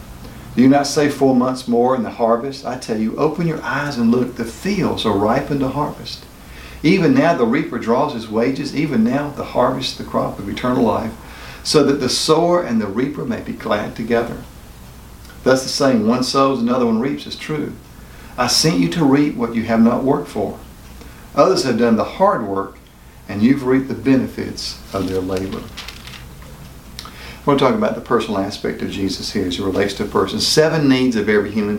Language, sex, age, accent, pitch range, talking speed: English, male, 50-69, American, 95-135 Hz, 200 wpm